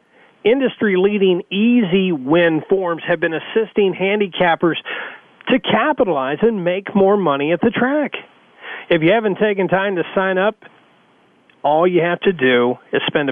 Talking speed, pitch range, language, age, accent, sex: 145 wpm, 150-215 Hz, English, 40-59, American, male